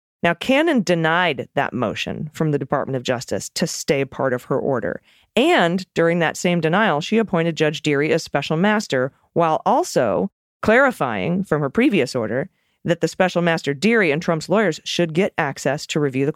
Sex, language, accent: female, English, American